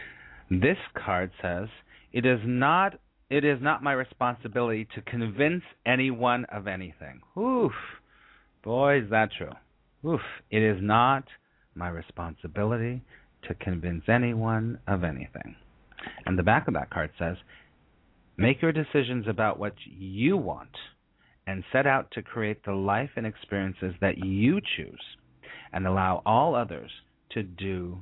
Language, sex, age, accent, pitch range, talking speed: English, male, 40-59, American, 95-125 Hz, 135 wpm